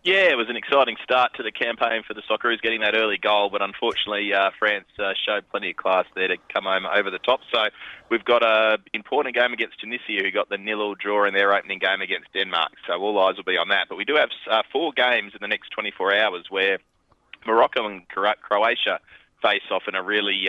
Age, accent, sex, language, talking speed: 20-39, Australian, male, English, 235 wpm